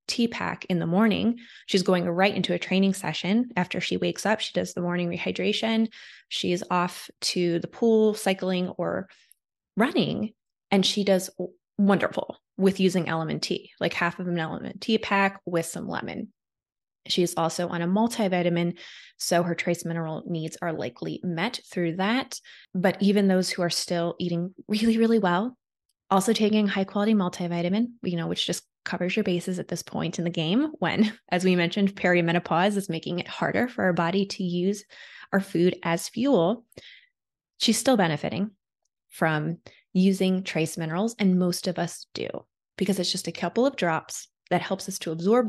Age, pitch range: 20-39, 175-210 Hz